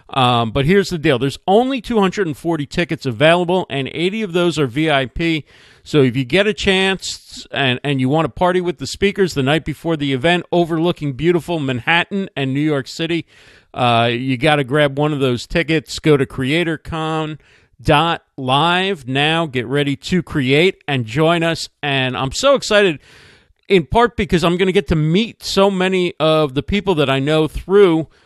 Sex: male